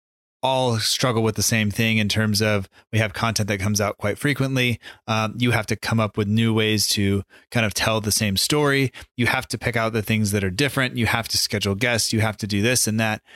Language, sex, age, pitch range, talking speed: English, male, 30-49, 105-125 Hz, 245 wpm